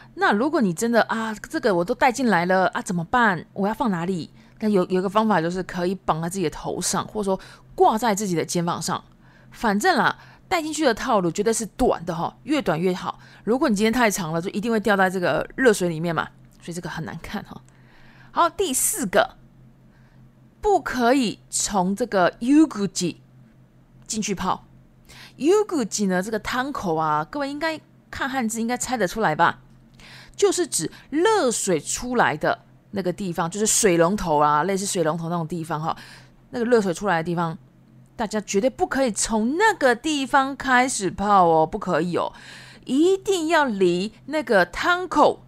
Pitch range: 175-255 Hz